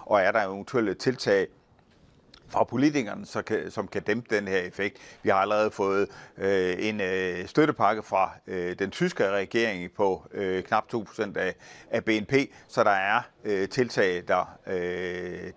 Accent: native